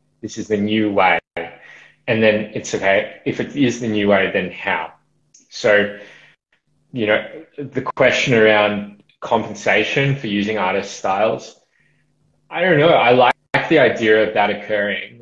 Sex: male